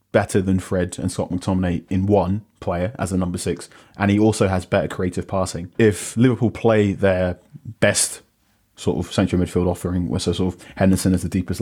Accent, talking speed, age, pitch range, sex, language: British, 190 wpm, 20-39, 90-100 Hz, male, English